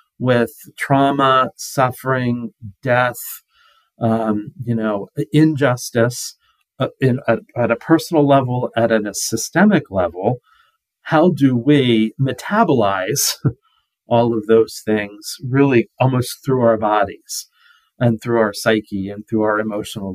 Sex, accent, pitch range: male, American, 110-140 Hz